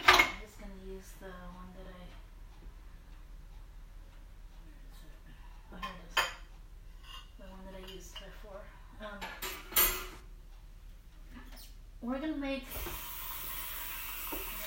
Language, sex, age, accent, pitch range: English, female, 30-49, American, 165-245 Hz